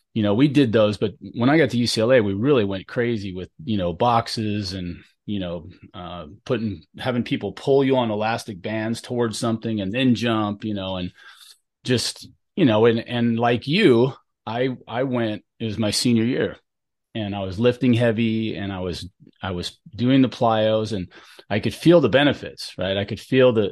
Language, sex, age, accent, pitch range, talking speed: English, male, 30-49, American, 100-125 Hz, 195 wpm